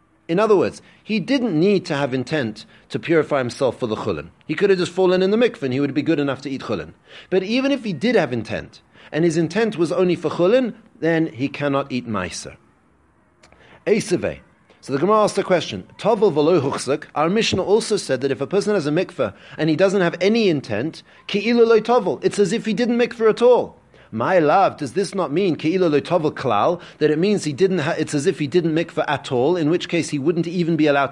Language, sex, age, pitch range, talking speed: English, male, 30-49, 140-195 Hz, 225 wpm